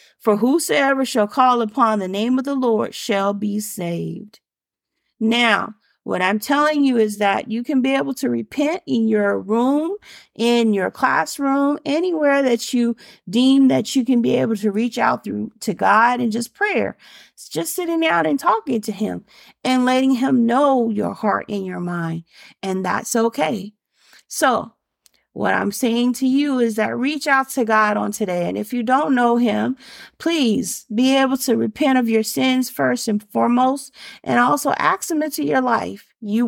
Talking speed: 180 wpm